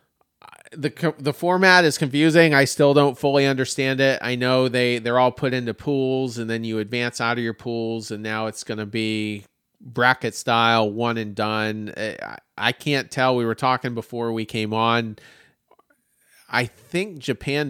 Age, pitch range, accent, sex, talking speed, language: 40-59, 115-150 Hz, American, male, 175 wpm, English